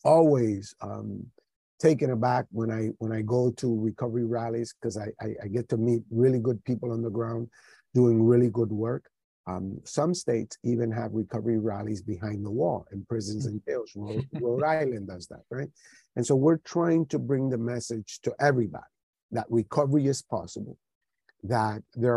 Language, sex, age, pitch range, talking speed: English, male, 50-69, 110-125 Hz, 175 wpm